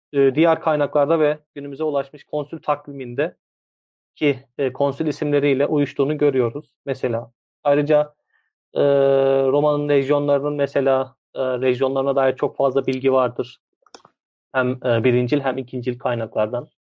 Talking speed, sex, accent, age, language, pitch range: 100 wpm, male, native, 30-49, Turkish, 130-145 Hz